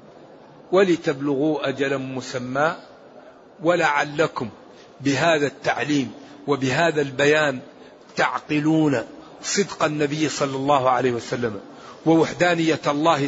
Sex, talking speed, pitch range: male, 75 wpm, 150-205 Hz